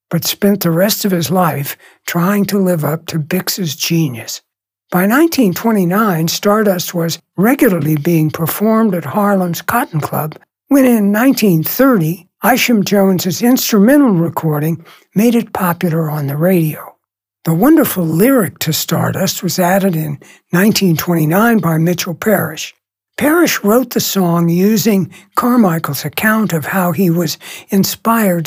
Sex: male